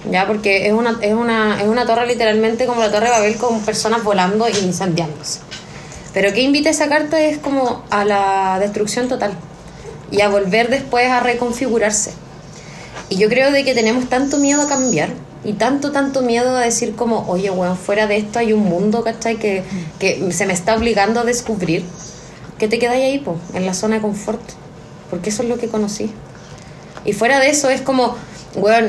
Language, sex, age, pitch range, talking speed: Spanish, female, 20-39, 200-240 Hz, 195 wpm